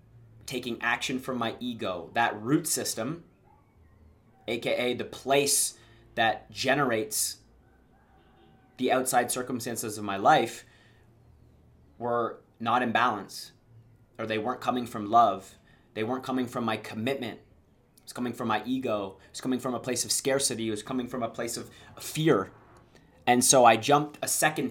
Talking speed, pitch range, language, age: 150 wpm, 110-130 Hz, English, 30-49